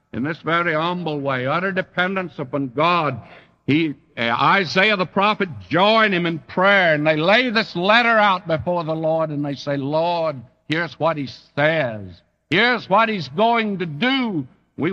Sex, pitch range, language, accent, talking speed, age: male, 145-165 Hz, English, American, 170 wpm, 60-79